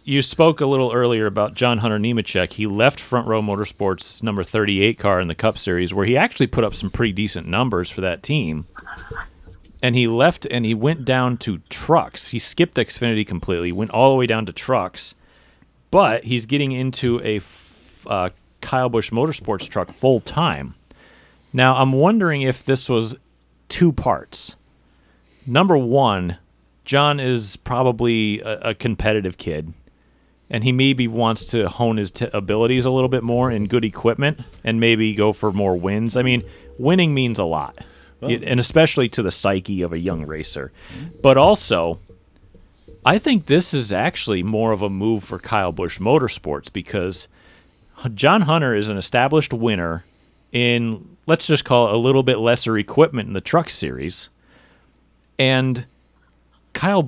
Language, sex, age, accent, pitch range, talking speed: English, male, 40-59, American, 95-130 Hz, 165 wpm